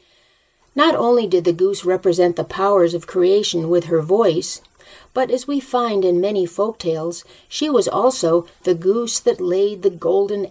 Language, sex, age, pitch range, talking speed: English, female, 50-69, 170-215 Hz, 170 wpm